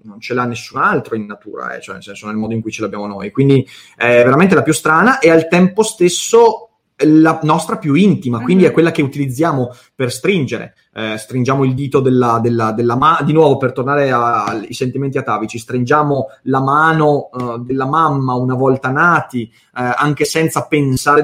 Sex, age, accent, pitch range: male, 30-49, native, 125-160 Hz